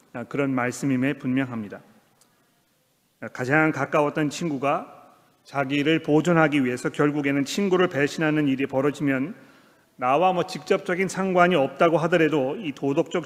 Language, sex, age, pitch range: Korean, male, 40-59, 140-170 Hz